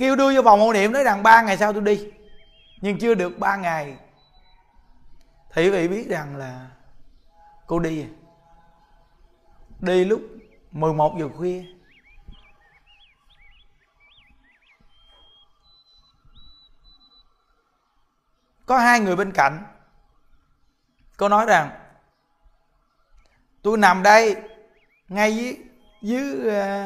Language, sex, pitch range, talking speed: Vietnamese, male, 165-215 Hz, 100 wpm